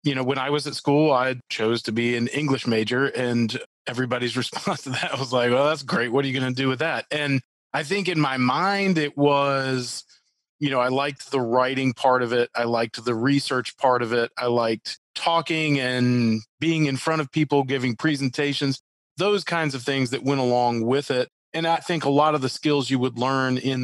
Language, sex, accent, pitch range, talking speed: English, male, American, 125-145 Hz, 225 wpm